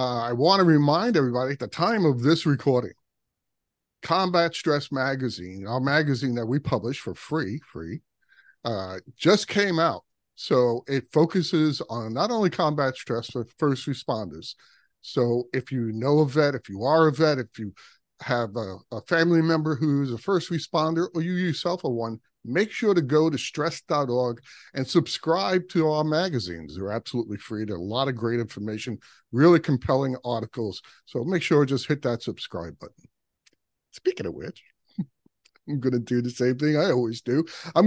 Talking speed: 175 wpm